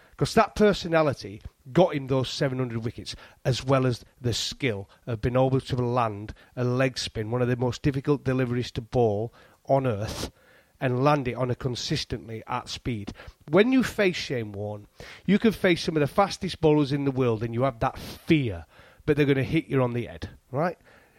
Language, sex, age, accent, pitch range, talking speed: English, male, 30-49, British, 115-155 Hz, 200 wpm